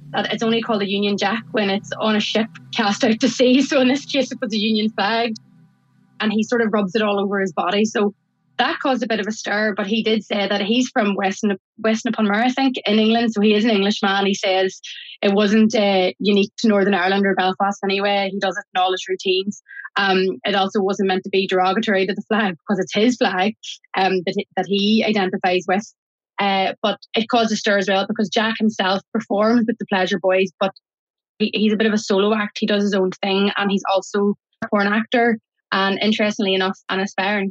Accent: Irish